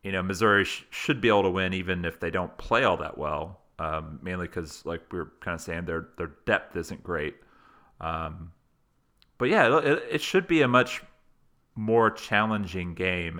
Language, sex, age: English, male, 30-49